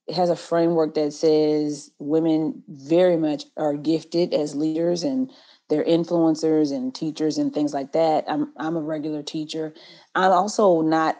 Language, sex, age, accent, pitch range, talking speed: English, female, 30-49, American, 160-210 Hz, 160 wpm